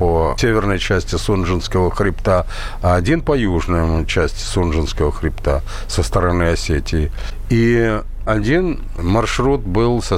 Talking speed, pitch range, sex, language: 120 wpm, 85-115 Hz, male, Russian